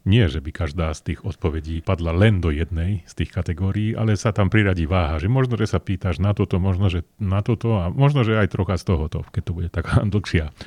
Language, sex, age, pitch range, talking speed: Slovak, male, 40-59, 85-105 Hz, 235 wpm